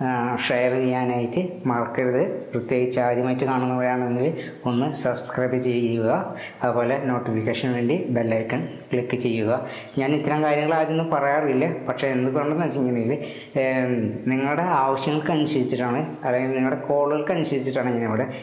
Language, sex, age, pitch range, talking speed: Malayalam, female, 20-39, 125-150 Hz, 95 wpm